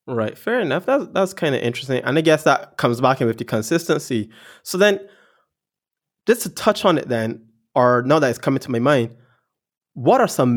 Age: 20-39